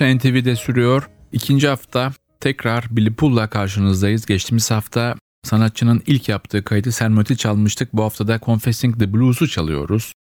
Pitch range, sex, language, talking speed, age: 90-110 Hz, male, Turkish, 130 wpm, 40-59